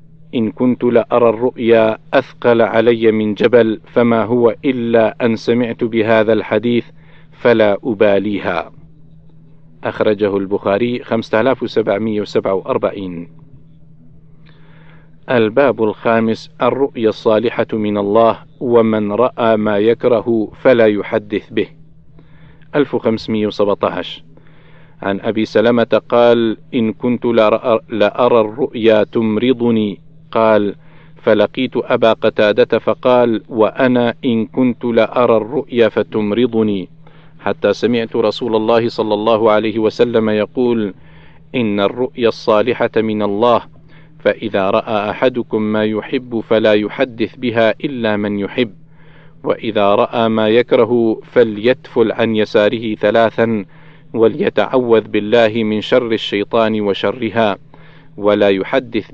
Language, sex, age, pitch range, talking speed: Arabic, male, 50-69, 110-130 Hz, 100 wpm